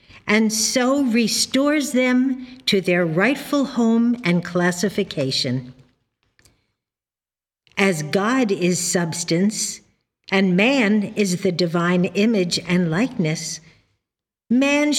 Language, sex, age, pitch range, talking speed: English, female, 50-69, 155-250 Hz, 90 wpm